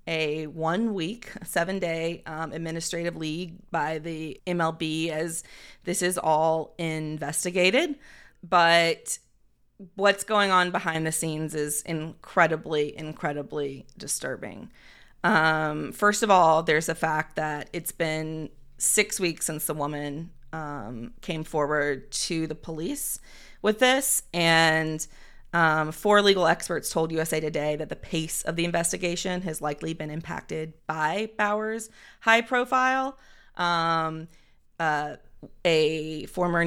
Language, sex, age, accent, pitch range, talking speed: English, female, 30-49, American, 155-175 Hz, 125 wpm